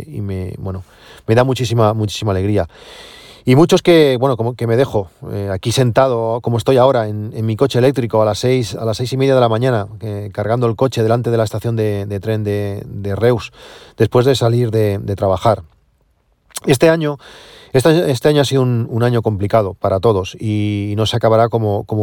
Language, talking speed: Spanish, 210 wpm